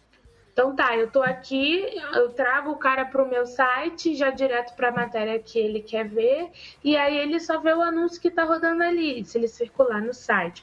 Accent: Brazilian